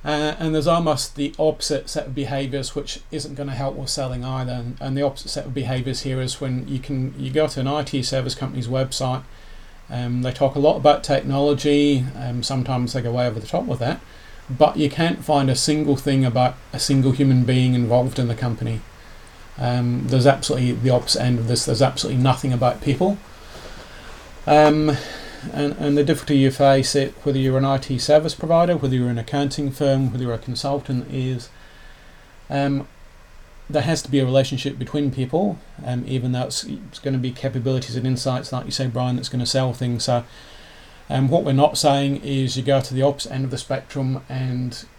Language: English